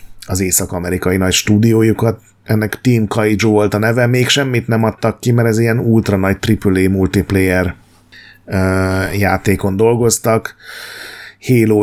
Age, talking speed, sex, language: 30-49, 130 wpm, male, Hungarian